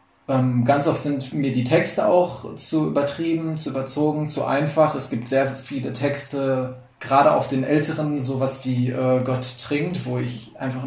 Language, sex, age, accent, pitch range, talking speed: German, male, 20-39, German, 130-155 Hz, 165 wpm